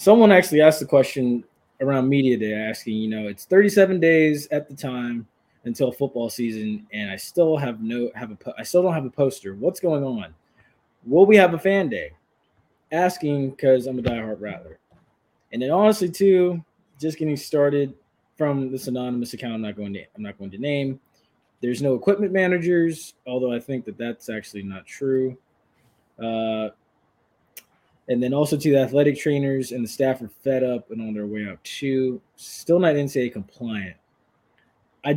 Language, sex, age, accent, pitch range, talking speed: English, male, 20-39, American, 115-150 Hz, 180 wpm